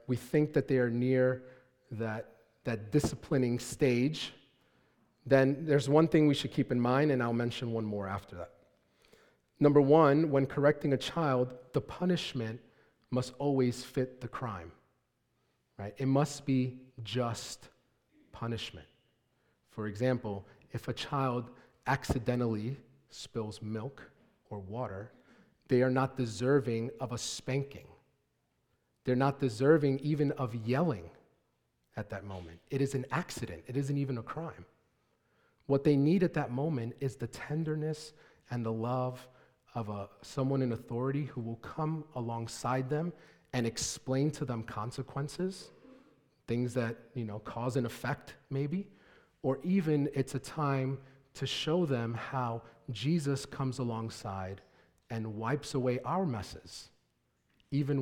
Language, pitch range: English, 115-140 Hz